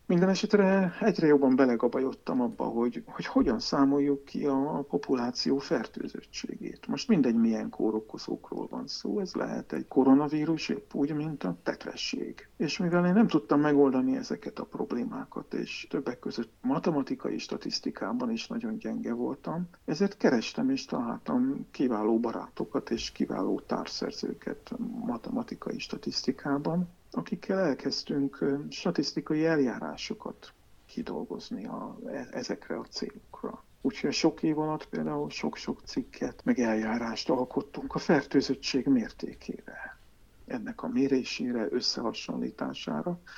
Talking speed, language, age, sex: 115 wpm, Hungarian, 50-69, male